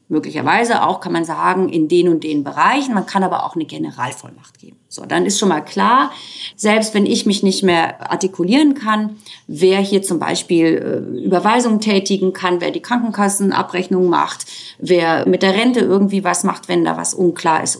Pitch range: 170-235 Hz